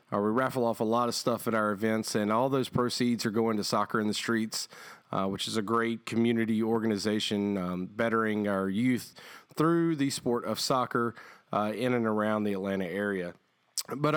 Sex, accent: male, American